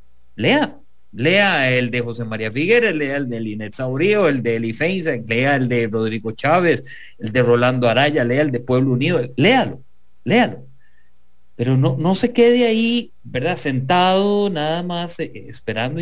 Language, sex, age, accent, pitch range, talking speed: English, male, 40-59, Mexican, 110-155 Hz, 160 wpm